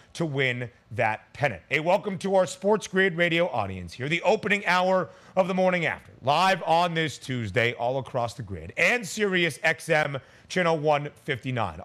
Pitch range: 130-190 Hz